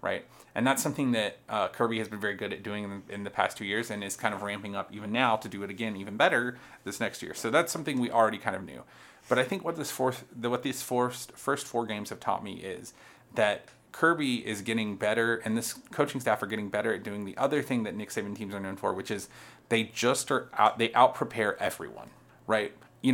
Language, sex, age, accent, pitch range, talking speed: English, male, 30-49, American, 105-125 Hz, 250 wpm